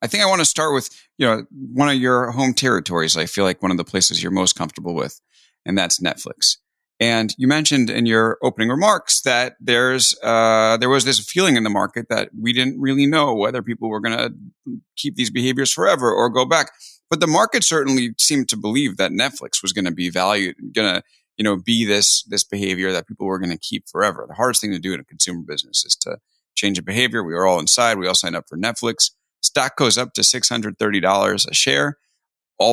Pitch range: 100-130 Hz